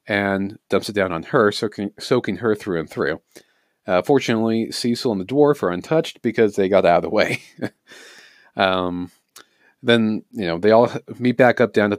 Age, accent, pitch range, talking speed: 40-59, American, 95-120 Hz, 185 wpm